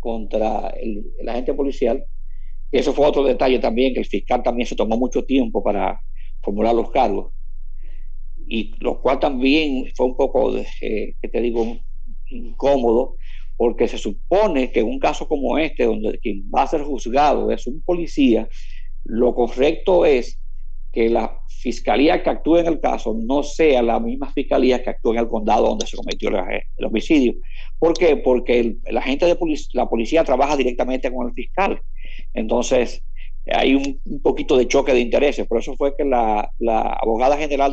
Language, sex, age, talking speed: Spanish, male, 50-69, 175 wpm